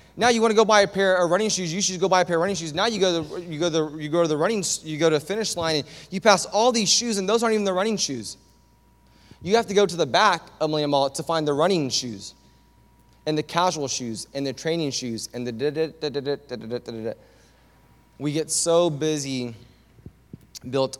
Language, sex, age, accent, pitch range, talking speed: English, male, 20-39, American, 120-170 Hz, 230 wpm